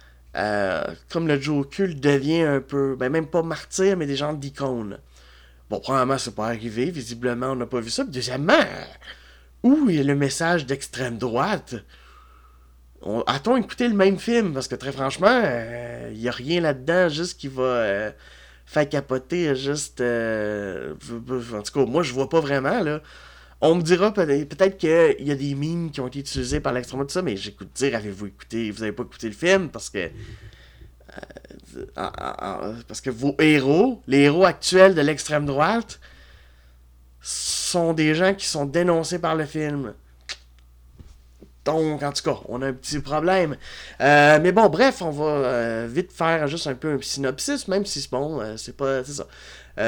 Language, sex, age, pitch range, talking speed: French, male, 20-39, 115-160 Hz, 185 wpm